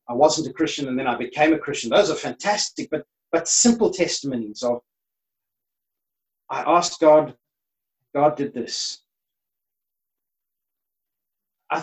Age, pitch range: 40-59, 150-210 Hz